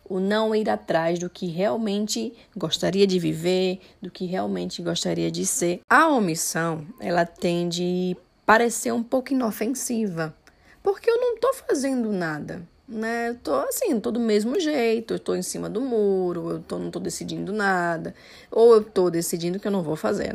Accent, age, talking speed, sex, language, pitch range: Brazilian, 10-29, 175 wpm, female, Portuguese, 170-225 Hz